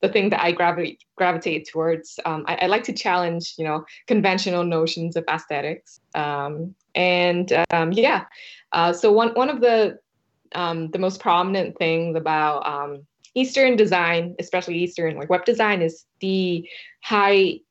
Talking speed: 155 wpm